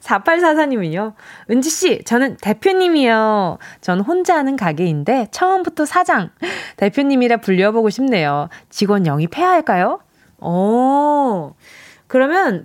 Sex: female